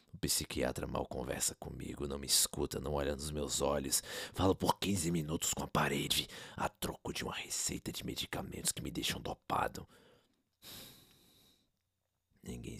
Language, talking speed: Portuguese, 150 wpm